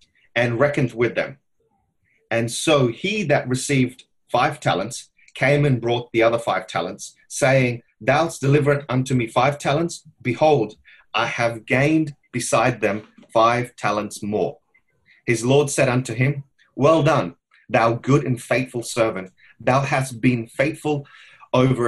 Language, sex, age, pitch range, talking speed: English, male, 30-49, 115-145 Hz, 145 wpm